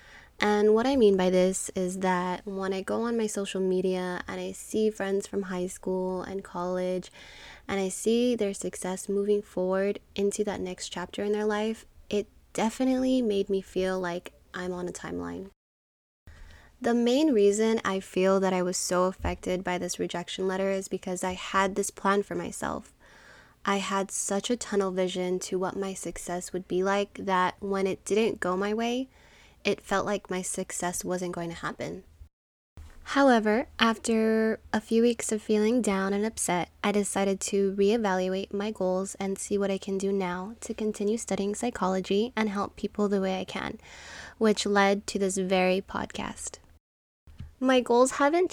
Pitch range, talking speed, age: 185-215 Hz, 175 wpm, 10-29